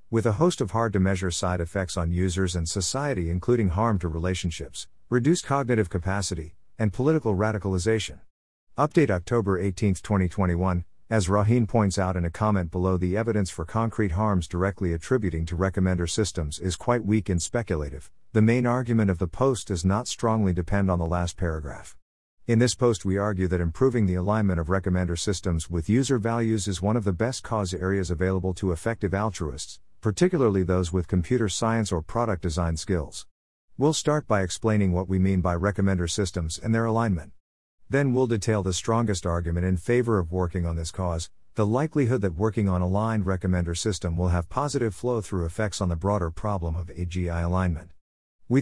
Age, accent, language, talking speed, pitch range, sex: 50-69, American, English, 180 wpm, 90-115 Hz, male